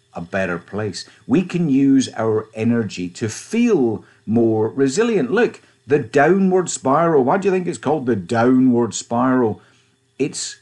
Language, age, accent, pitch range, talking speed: English, 50-69, British, 110-150 Hz, 145 wpm